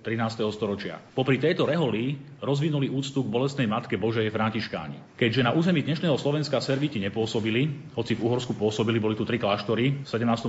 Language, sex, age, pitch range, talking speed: Slovak, male, 30-49, 115-140 Hz, 170 wpm